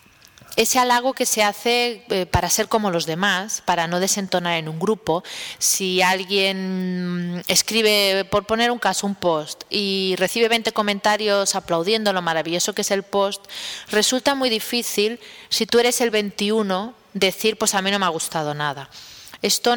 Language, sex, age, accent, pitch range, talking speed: Spanish, female, 30-49, Spanish, 175-220 Hz, 165 wpm